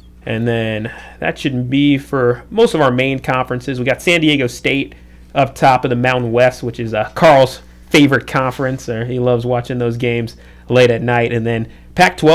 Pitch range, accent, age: 115-140 Hz, American, 30-49